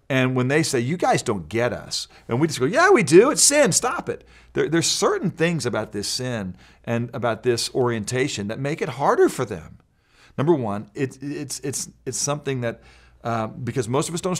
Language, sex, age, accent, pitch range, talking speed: English, male, 40-59, American, 105-140 Hz, 215 wpm